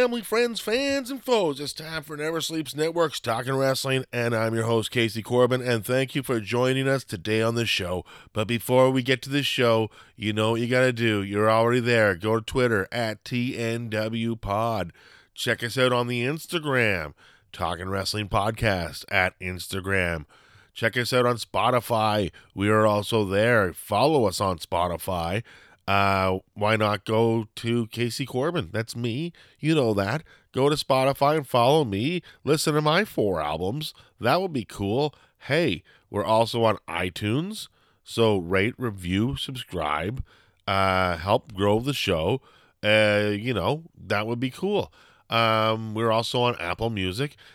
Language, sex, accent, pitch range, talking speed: English, male, American, 105-130 Hz, 165 wpm